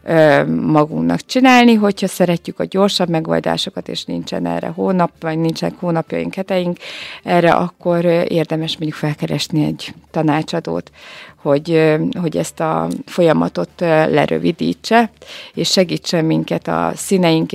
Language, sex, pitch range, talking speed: Hungarian, female, 145-185 Hz, 115 wpm